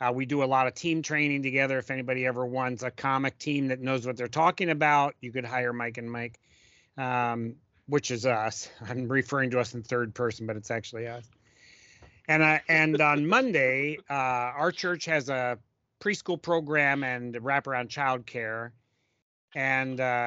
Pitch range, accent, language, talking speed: 120-155 Hz, American, English, 175 wpm